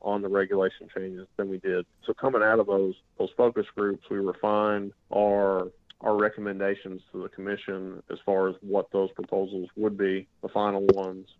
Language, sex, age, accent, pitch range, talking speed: English, male, 20-39, American, 95-105 Hz, 180 wpm